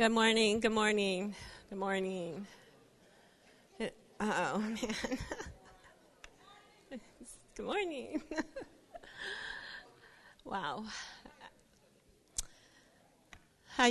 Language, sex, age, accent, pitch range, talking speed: English, female, 40-59, American, 200-255 Hz, 55 wpm